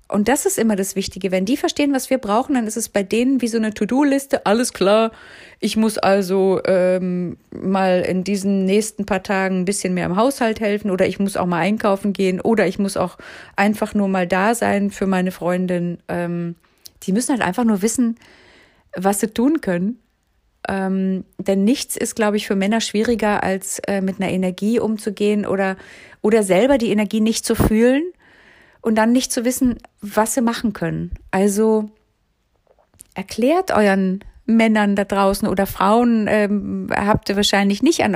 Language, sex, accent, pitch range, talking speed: German, female, German, 195-235 Hz, 180 wpm